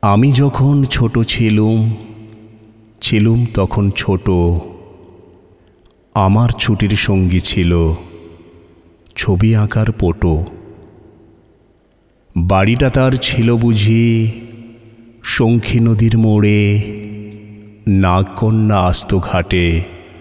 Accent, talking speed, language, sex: native, 75 wpm, Bengali, male